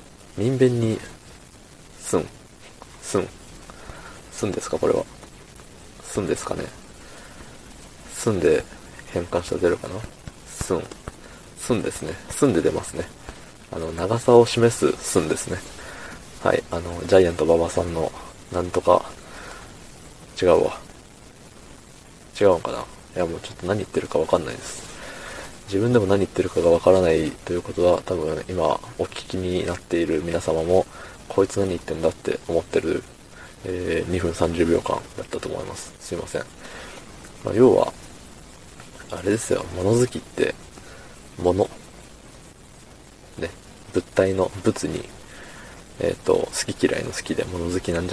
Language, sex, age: Japanese, male, 20-39